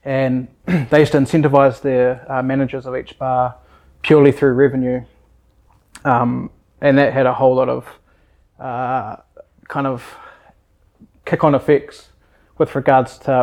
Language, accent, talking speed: English, Australian, 140 wpm